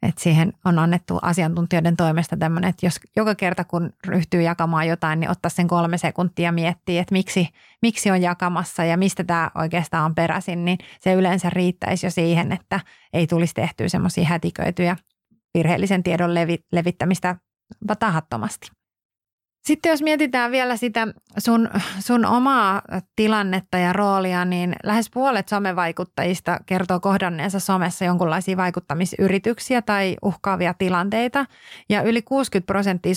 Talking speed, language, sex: 135 wpm, Finnish, female